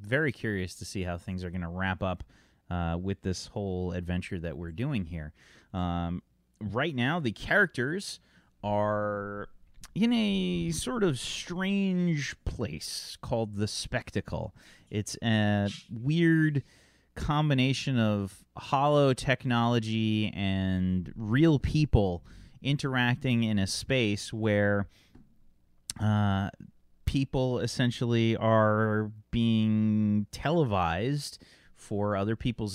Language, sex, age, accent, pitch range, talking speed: English, male, 30-49, American, 95-130 Hz, 110 wpm